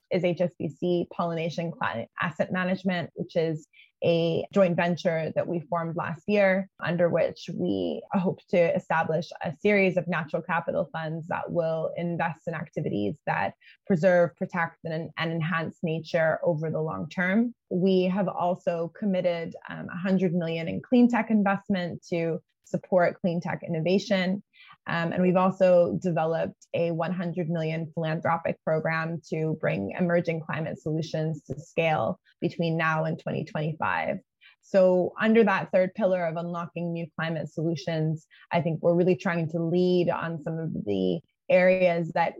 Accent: American